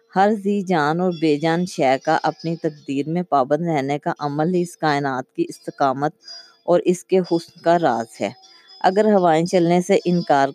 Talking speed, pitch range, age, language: 180 wpm, 150-185 Hz, 20-39, Urdu